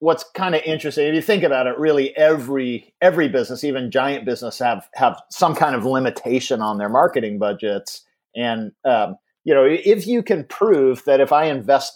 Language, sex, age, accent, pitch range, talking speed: German, male, 40-59, American, 115-145 Hz, 190 wpm